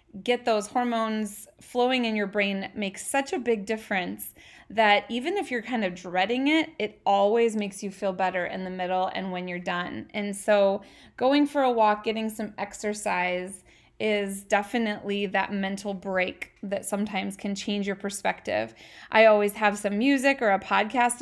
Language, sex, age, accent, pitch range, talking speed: English, female, 20-39, American, 195-230 Hz, 175 wpm